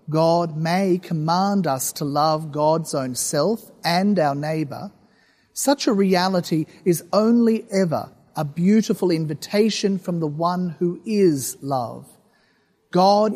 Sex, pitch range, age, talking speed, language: male, 155-205 Hz, 40-59, 125 wpm, English